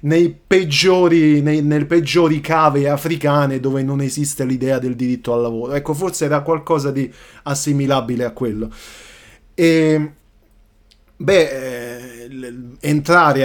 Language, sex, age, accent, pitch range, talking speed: Italian, male, 30-49, native, 120-150 Hz, 115 wpm